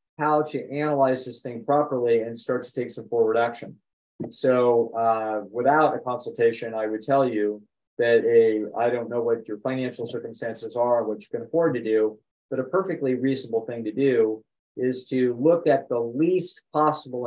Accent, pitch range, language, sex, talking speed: American, 115-145 Hz, English, male, 180 wpm